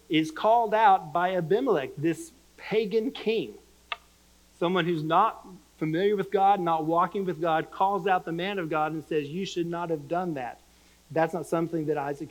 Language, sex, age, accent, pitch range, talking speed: English, male, 40-59, American, 155-210 Hz, 180 wpm